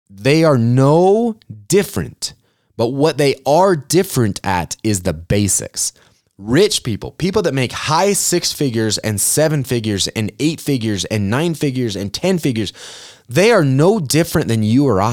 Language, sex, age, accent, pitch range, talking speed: English, male, 30-49, American, 100-145 Hz, 160 wpm